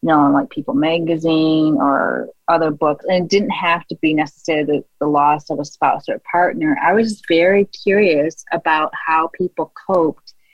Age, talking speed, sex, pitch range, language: 30-49, 165 wpm, female, 155-180 Hz, English